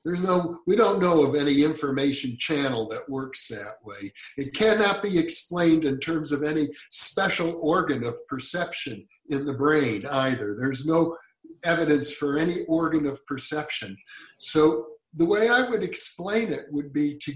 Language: English